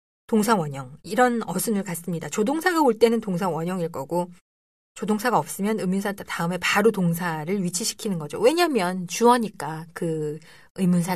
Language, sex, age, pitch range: Korean, female, 20-39, 170-250 Hz